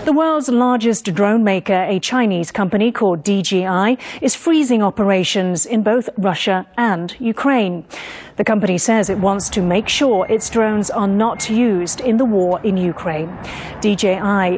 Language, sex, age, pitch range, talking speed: English, female, 40-59, 185-225 Hz, 150 wpm